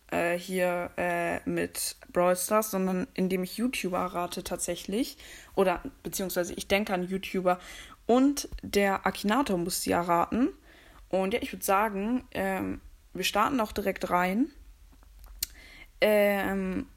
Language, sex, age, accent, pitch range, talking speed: German, female, 20-39, German, 180-215 Hz, 125 wpm